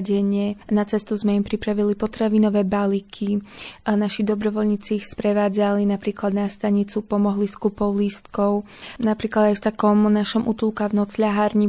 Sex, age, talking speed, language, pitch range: female, 20-39, 140 wpm, Slovak, 205-220 Hz